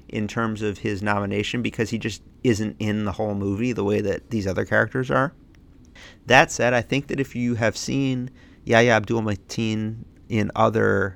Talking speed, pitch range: 175 wpm, 100-120 Hz